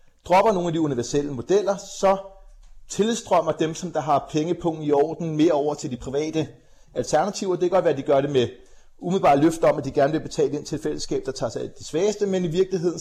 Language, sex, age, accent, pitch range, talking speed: Danish, male, 30-49, native, 140-175 Hz, 230 wpm